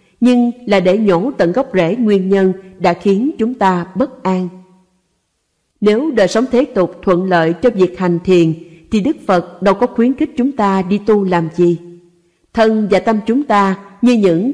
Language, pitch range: Vietnamese, 180-235 Hz